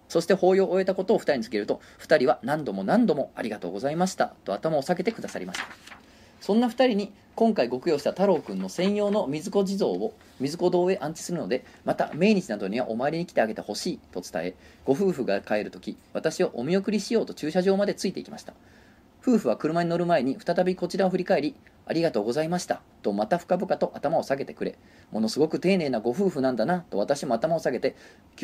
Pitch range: 130-190 Hz